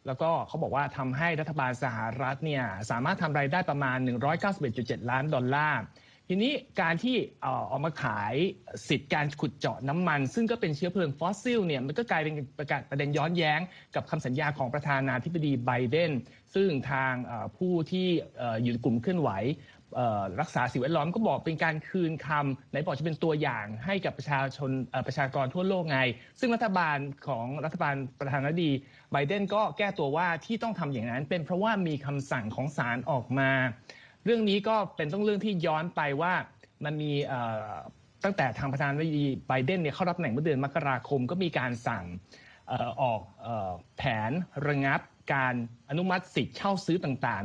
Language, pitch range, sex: Thai, 130-170 Hz, male